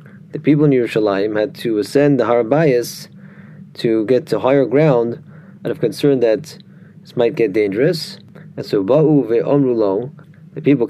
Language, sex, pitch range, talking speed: English, male, 125-165 Hz, 145 wpm